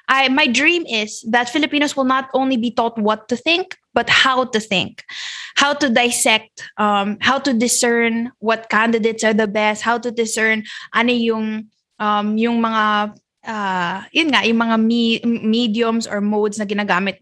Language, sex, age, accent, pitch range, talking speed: English, female, 20-39, Filipino, 210-260 Hz, 170 wpm